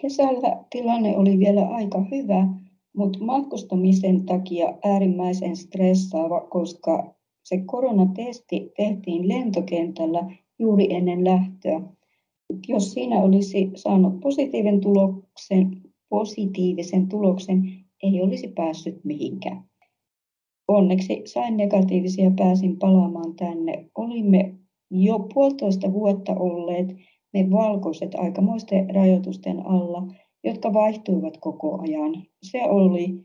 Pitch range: 180-200 Hz